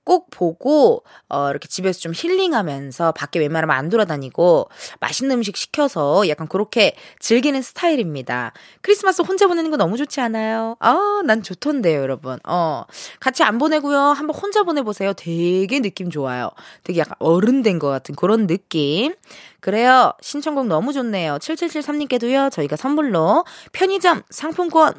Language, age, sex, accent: Korean, 20-39, female, native